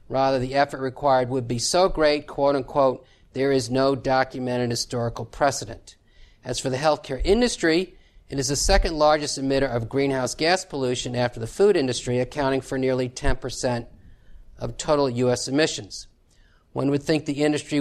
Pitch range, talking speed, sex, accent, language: 120-145 Hz, 160 wpm, male, American, English